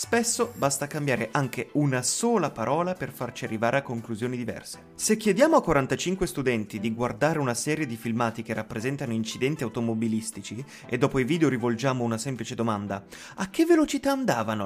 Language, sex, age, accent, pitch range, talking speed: Italian, male, 30-49, native, 115-195 Hz, 165 wpm